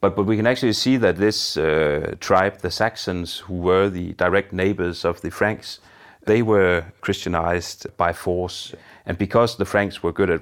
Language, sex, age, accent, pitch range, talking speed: English, male, 30-49, Danish, 85-95 Hz, 185 wpm